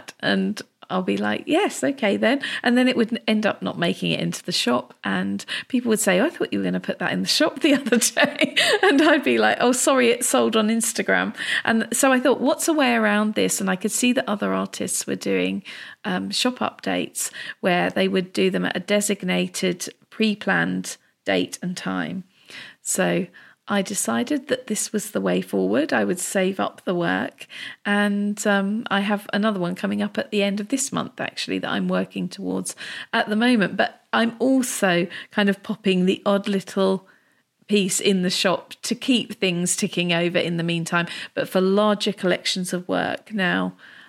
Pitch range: 175-230 Hz